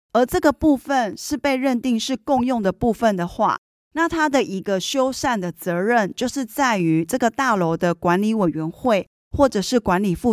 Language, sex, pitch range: Chinese, female, 190-265 Hz